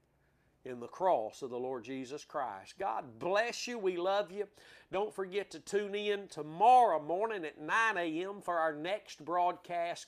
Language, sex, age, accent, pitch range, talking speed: English, male, 50-69, American, 150-195 Hz, 165 wpm